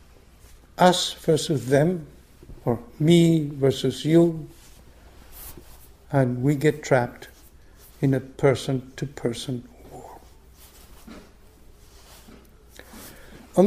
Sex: male